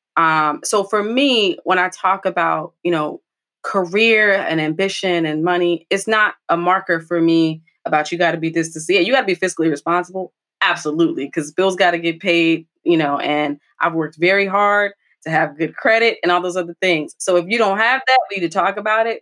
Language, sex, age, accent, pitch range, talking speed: English, female, 20-39, American, 160-200 Hz, 220 wpm